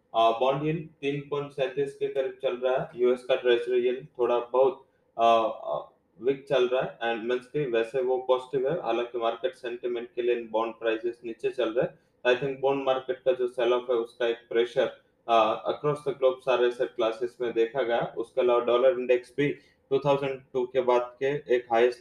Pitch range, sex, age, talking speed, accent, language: 120-135 Hz, male, 20-39, 140 wpm, Indian, English